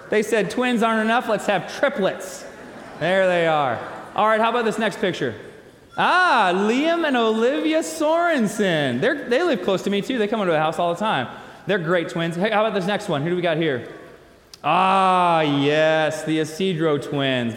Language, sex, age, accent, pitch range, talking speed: English, male, 20-39, American, 185-245 Hz, 190 wpm